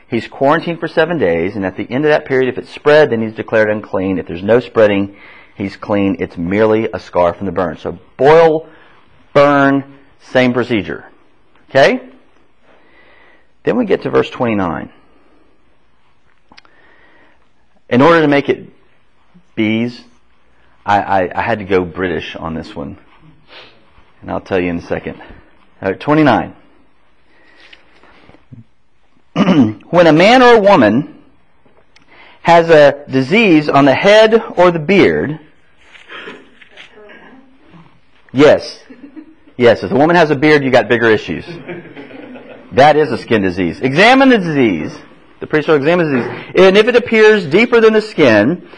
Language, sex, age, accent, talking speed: English, male, 40-59, American, 145 wpm